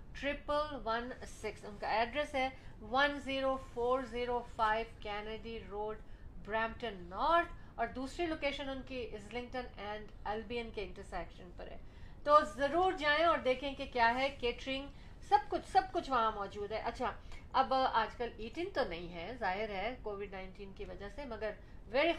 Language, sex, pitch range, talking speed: Urdu, female, 215-270 Hz, 145 wpm